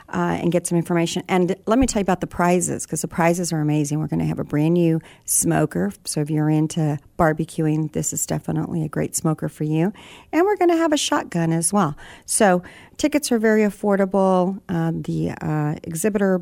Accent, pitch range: American, 155-190 Hz